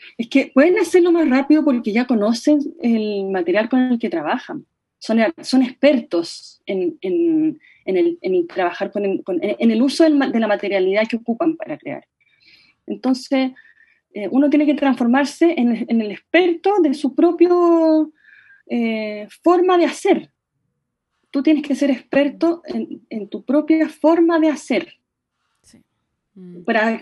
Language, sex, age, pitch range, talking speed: Spanish, female, 20-39, 220-310 Hz, 130 wpm